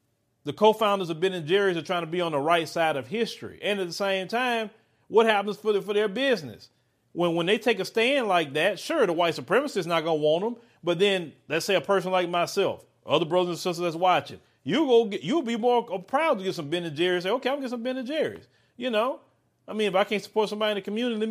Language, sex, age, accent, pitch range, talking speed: English, male, 40-59, American, 165-225 Hz, 265 wpm